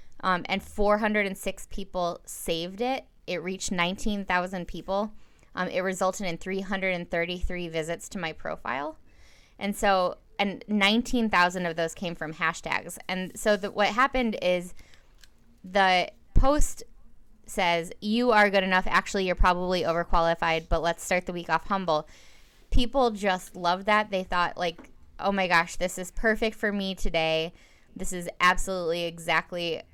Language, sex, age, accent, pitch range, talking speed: English, female, 20-39, American, 170-200 Hz, 145 wpm